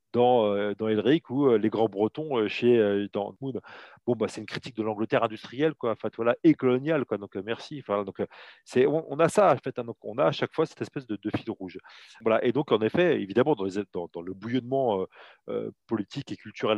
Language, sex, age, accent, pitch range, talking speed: French, male, 30-49, French, 105-130 Hz, 235 wpm